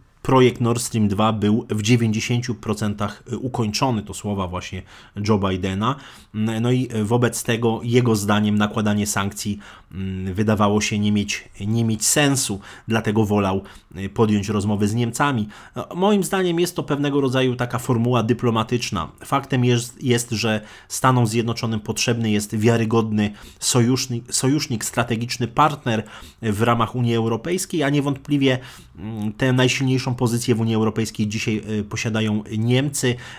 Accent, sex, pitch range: native, male, 105-125 Hz